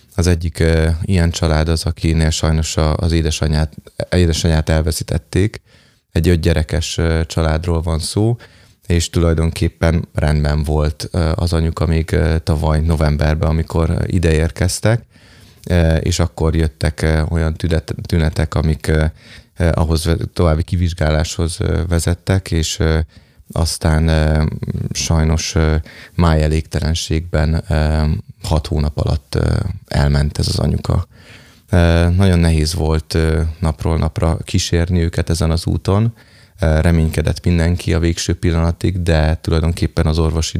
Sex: male